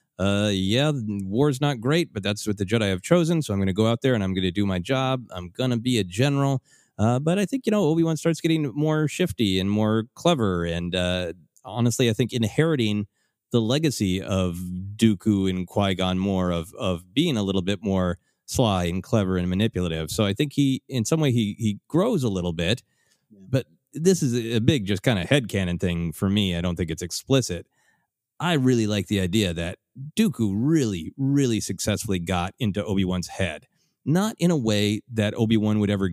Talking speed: 210 wpm